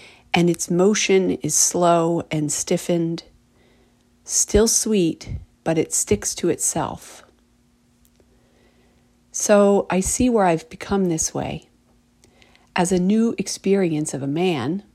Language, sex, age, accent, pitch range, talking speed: English, female, 40-59, American, 150-180 Hz, 115 wpm